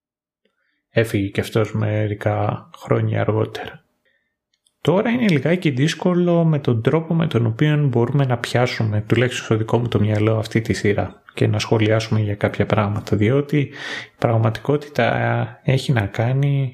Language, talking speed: Greek, 145 wpm